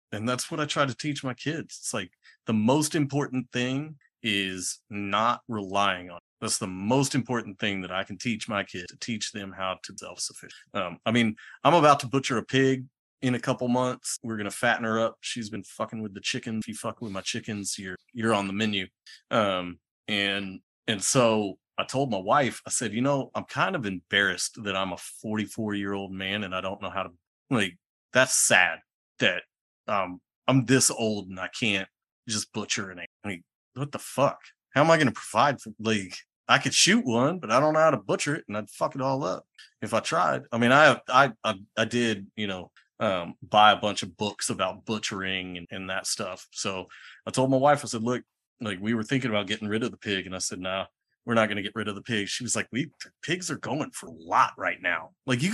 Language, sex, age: English, male, 30-49